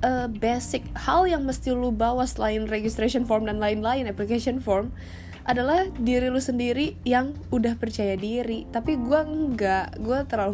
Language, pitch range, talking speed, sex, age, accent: Indonesian, 195-260 Hz, 155 wpm, female, 20-39, native